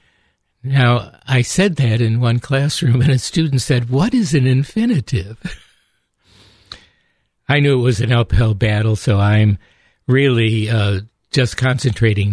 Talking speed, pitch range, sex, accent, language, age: 135 wpm, 105-135 Hz, male, American, English, 60-79